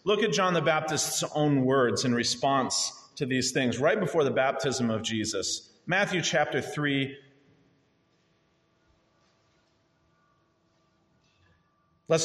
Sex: male